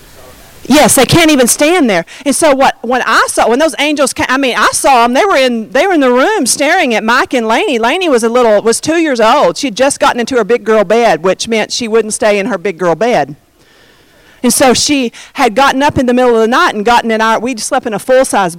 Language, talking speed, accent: English, 260 wpm, American